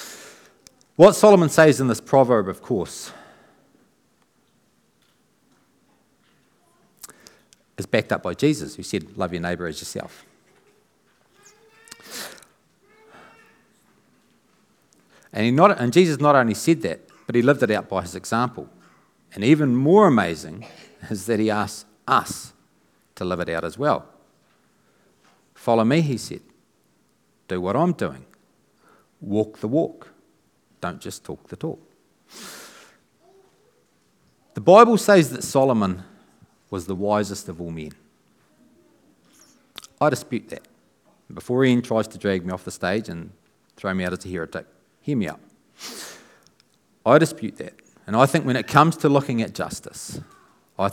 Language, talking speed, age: English, 135 wpm, 40-59